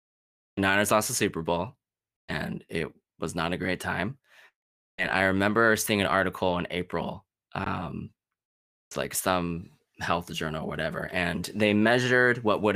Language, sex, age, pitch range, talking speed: English, male, 20-39, 90-100 Hz, 150 wpm